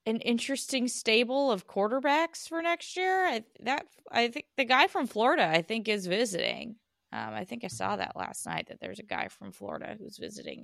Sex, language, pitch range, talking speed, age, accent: female, English, 185-265 Hz, 205 wpm, 20-39, American